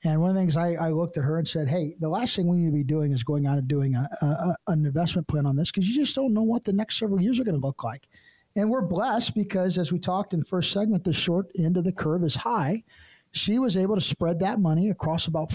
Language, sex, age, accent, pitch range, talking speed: English, male, 50-69, American, 160-210 Hz, 285 wpm